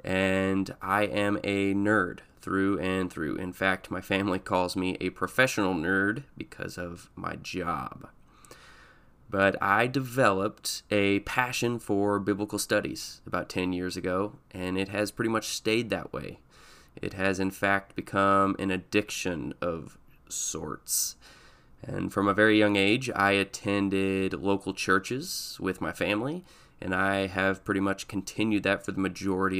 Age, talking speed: 20-39, 150 wpm